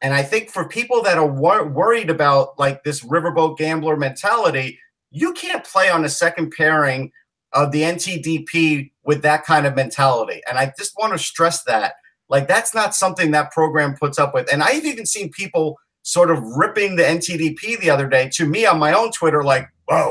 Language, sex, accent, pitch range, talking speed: English, male, American, 150-190 Hz, 195 wpm